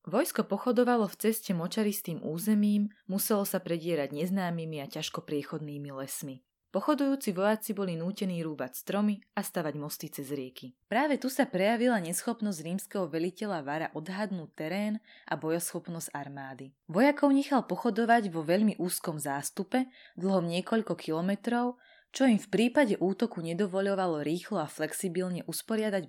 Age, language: 20-39, Slovak